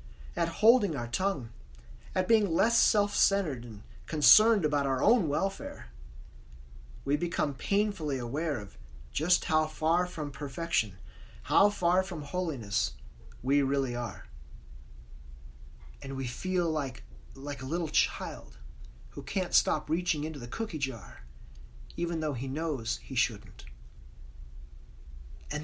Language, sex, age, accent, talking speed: English, male, 30-49, American, 125 wpm